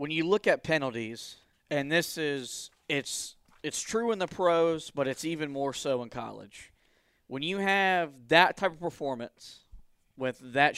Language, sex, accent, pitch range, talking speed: English, male, American, 145-190 Hz, 175 wpm